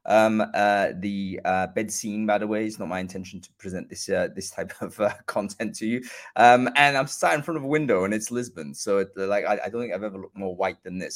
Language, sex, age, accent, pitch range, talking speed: English, male, 20-39, British, 100-140 Hz, 270 wpm